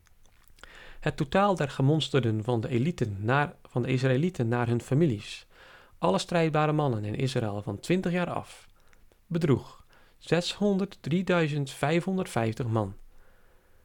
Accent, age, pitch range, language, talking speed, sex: Dutch, 40-59, 115-170 Hz, Dutch, 100 wpm, male